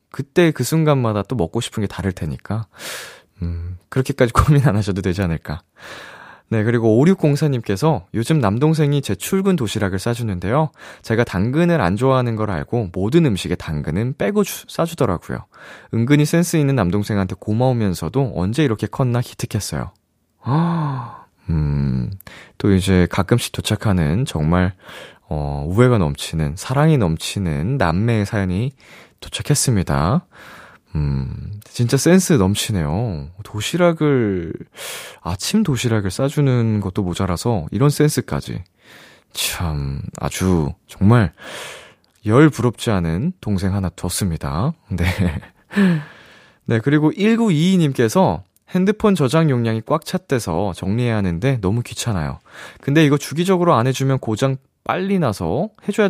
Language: Korean